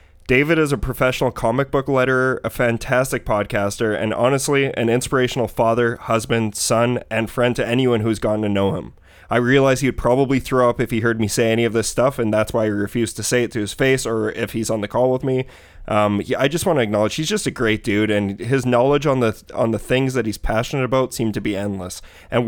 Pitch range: 110-130 Hz